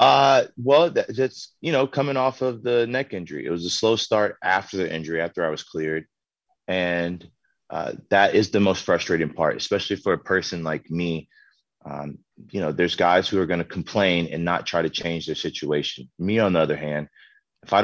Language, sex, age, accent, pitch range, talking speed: English, male, 30-49, American, 85-115 Hz, 205 wpm